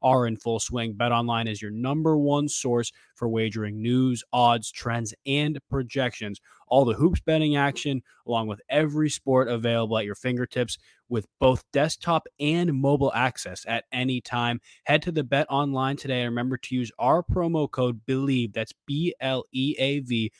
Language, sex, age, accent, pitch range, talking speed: English, male, 20-39, American, 120-145 Hz, 175 wpm